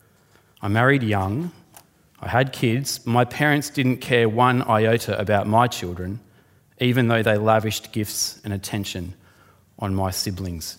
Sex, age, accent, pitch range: male, 30-49, Australian, 105-160 Hz